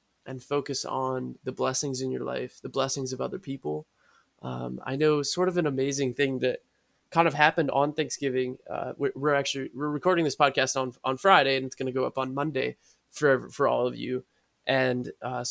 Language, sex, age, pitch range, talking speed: English, male, 20-39, 130-150 Hz, 205 wpm